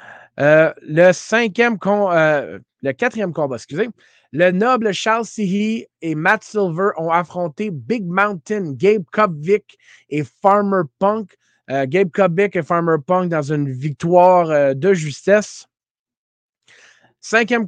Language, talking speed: French, 130 wpm